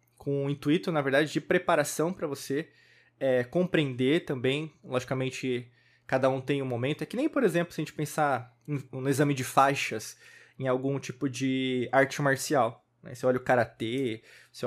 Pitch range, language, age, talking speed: 125-155 Hz, Portuguese, 20-39, 170 wpm